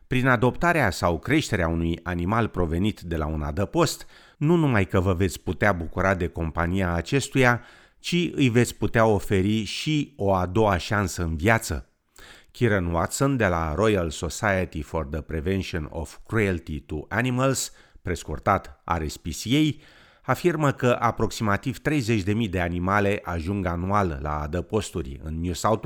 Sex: male